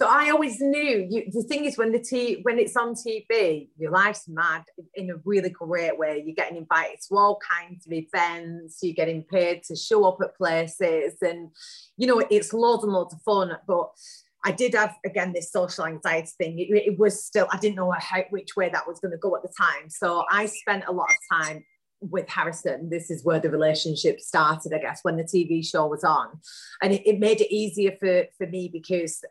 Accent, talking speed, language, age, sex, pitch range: British, 220 wpm, English, 30-49, female, 160-205 Hz